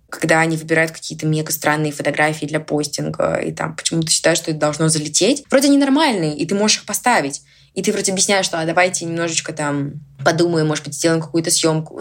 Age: 20-39